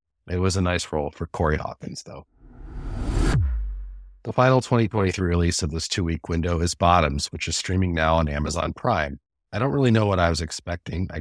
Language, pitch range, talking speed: English, 80-95 Hz, 185 wpm